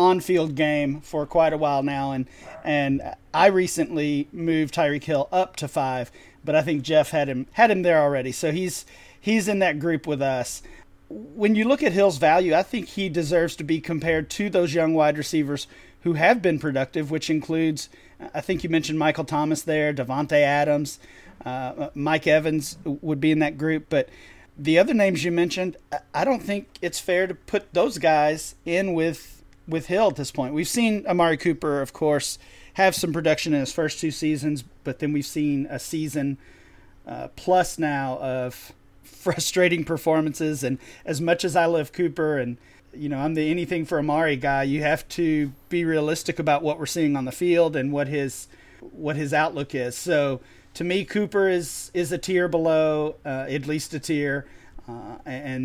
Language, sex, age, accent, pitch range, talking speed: English, male, 40-59, American, 145-170 Hz, 190 wpm